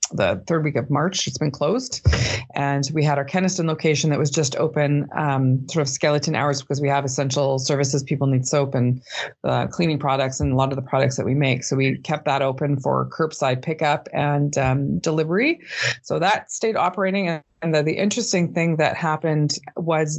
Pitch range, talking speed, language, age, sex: 135-155 Hz, 200 wpm, English, 20-39, female